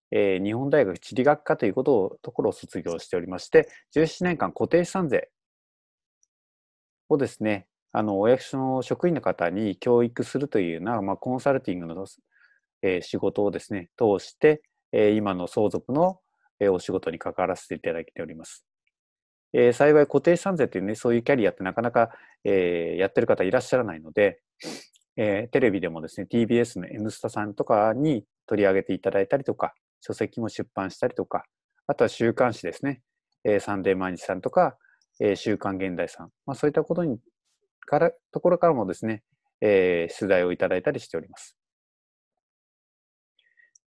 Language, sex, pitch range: Japanese, male, 100-150 Hz